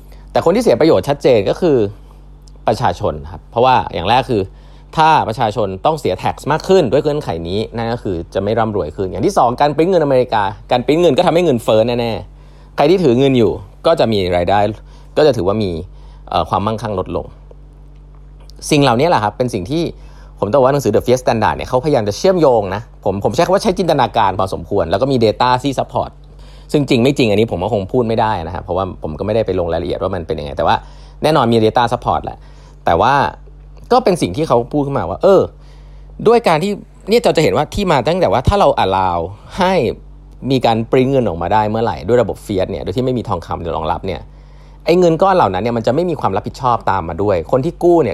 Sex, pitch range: male, 100-145 Hz